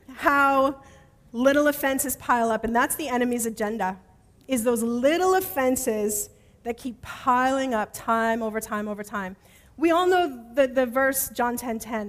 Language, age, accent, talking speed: English, 30-49, American, 160 wpm